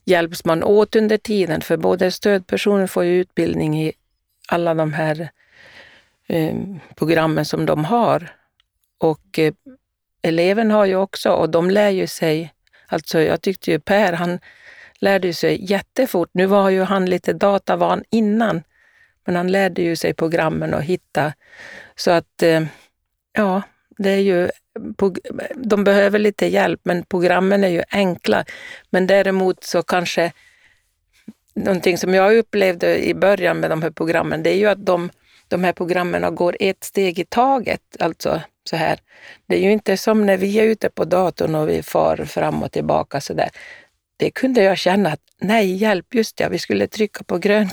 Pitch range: 170-205 Hz